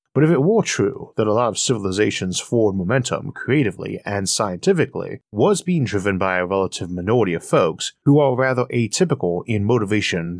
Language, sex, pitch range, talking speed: English, male, 100-145 Hz, 180 wpm